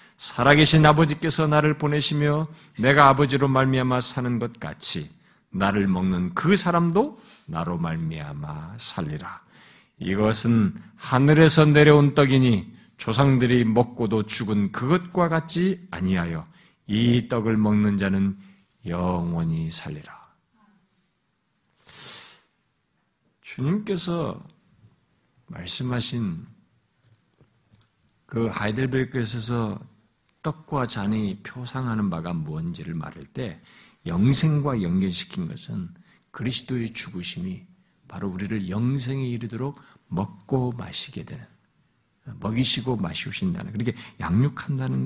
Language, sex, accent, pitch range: Korean, male, native, 105-150 Hz